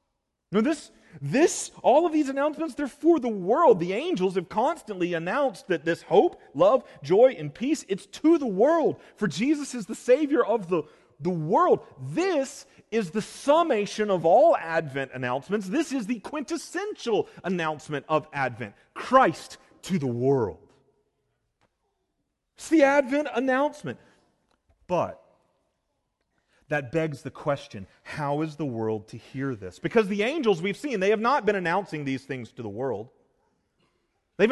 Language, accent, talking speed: English, American, 150 wpm